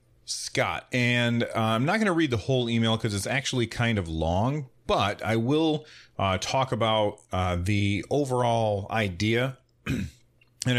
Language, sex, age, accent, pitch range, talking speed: English, male, 30-49, American, 100-125 Hz, 155 wpm